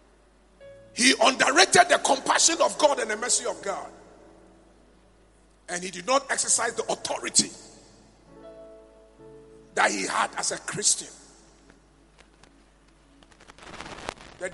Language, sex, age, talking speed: English, male, 50-69, 105 wpm